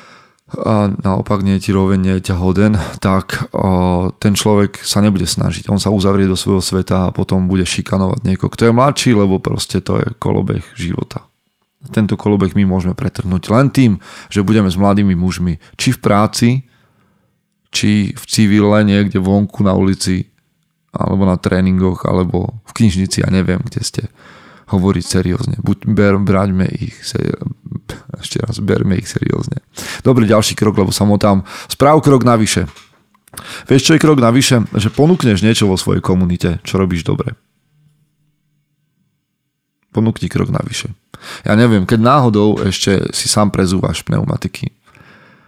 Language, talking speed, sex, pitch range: Slovak, 150 wpm, male, 95-115 Hz